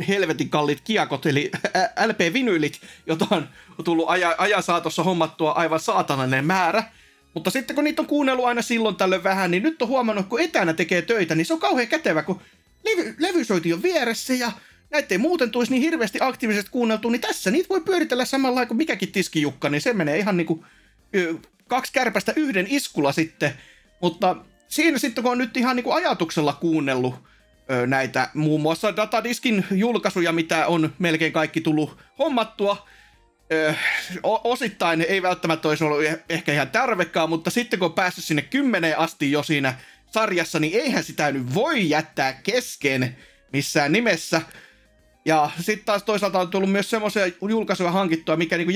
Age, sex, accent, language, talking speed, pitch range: 30-49, male, native, Finnish, 165 wpm, 160-235 Hz